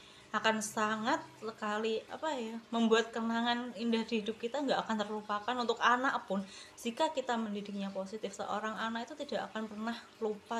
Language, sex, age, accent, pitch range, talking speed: Indonesian, female, 20-39, native, 195-235 Hz, 160 wpm